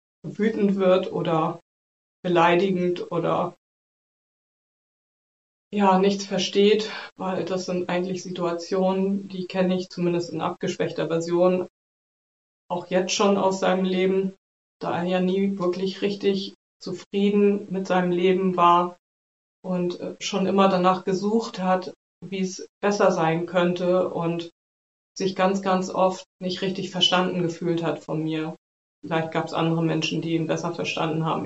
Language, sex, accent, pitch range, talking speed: German, female, German, 170-185 Hz, 135 wpm